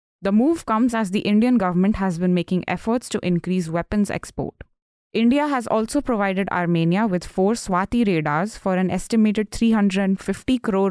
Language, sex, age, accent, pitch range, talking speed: English, female, 20-39, Indian, 180-230 Hz, 160 wpm